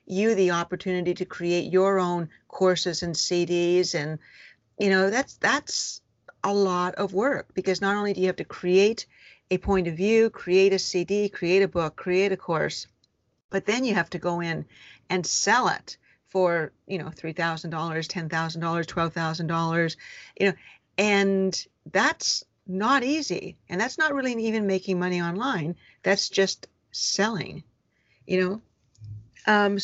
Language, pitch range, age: English, 175-210 Hz, 50-69